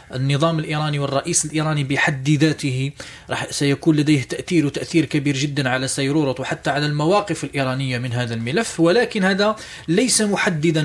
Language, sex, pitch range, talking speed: Arabic, male, 140-185 Hz, 140 wpm